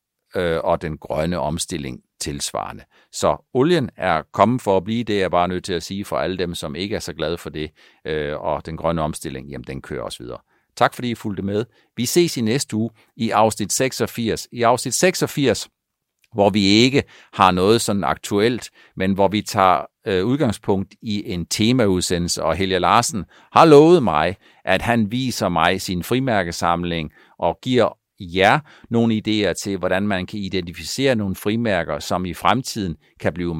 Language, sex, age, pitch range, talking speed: Danish, male, 50-69, 80-110 Hz, 175 wpm